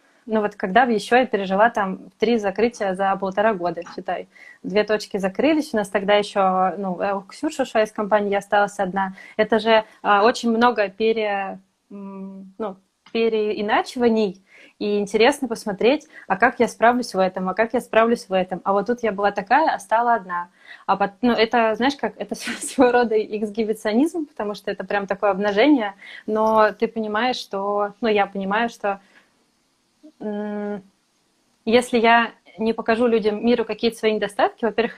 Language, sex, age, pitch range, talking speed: Russian, female, 20-39, 205-235 Hz, 160 wpm